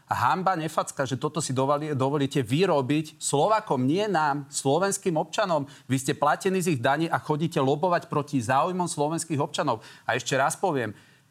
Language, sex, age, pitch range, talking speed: Slovak, male, 40-59, 130-155 Hz, 165 wpm